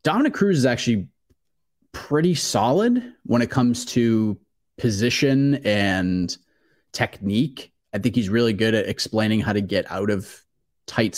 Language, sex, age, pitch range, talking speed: English, male, 30-49, 100-130 Hz, 140 wpm